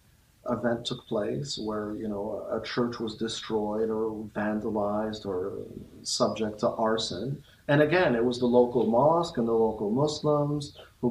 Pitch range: 105-125 Hz